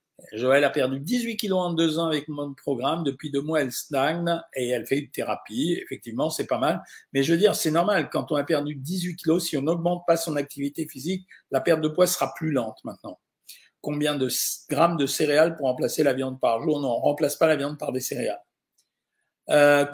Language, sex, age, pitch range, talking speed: French, male, 50-69, 130-160 Hz, 225 wpm